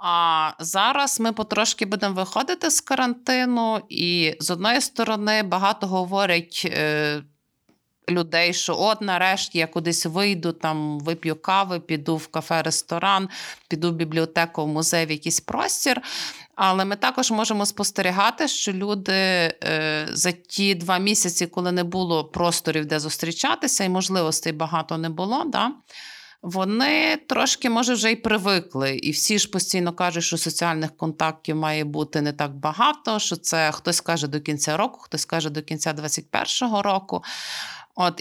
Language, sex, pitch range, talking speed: Ukrainian, female, 160-210 Hz, 145 wpm